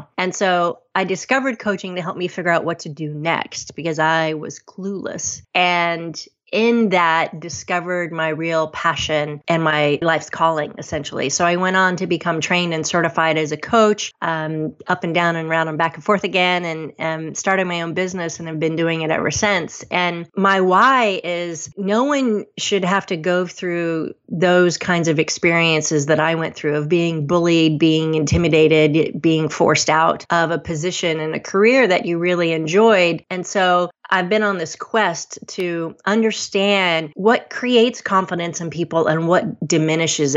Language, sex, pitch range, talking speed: English, female, 160-185 Hz, 180 wpm